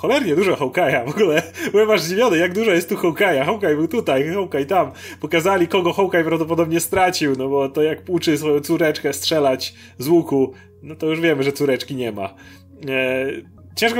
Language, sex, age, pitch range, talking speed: Polish, male, 30-49, 130-180 Hz, 190 wpm